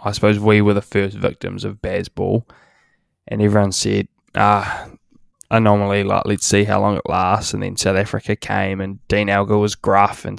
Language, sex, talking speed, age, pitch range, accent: English, male, 185 wpm, 10-29, 100-110 Hz, Australian